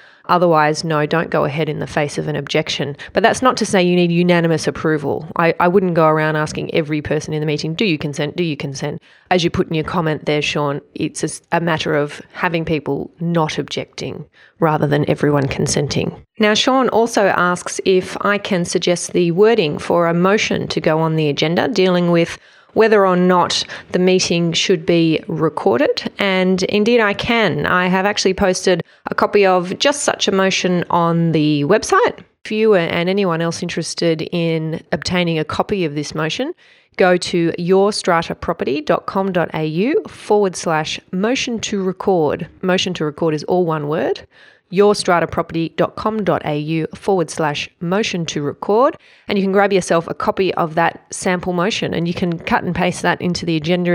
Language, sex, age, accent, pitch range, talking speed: English, female, 30-49, Australian, 160-195 Hz, 175 wpm